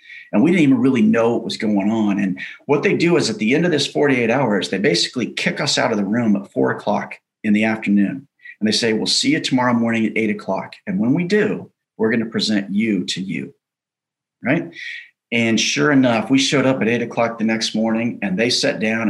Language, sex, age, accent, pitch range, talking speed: English, male, 40-59, American, 105-130 Hz, 235 wpm